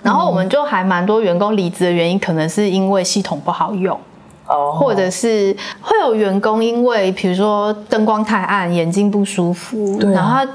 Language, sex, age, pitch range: Chinese, female, 30-49, 185-245 Hz